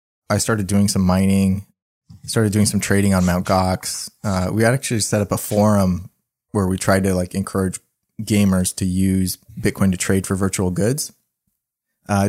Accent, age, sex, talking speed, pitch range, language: American, 20-39, male, 180 wpm, 90-100 Hz, English